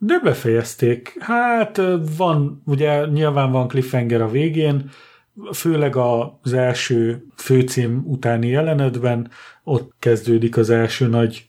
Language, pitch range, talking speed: Hungarian, 120-145 Hz, 110 wpm